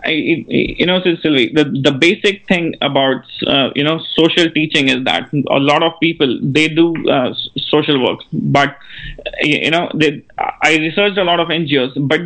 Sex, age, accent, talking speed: male, 30-49, Indian, 180 wpm